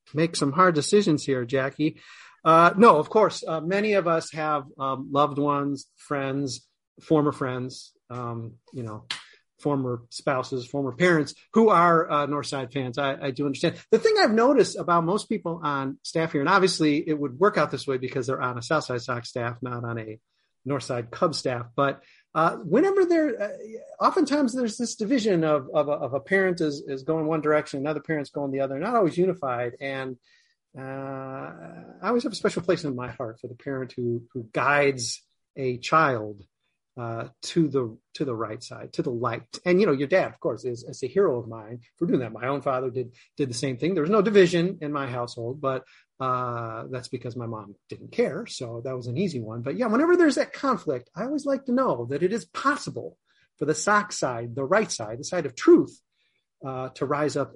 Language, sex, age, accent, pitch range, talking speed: English, male, 40-59, American, 130-180 Hz, 210 wpm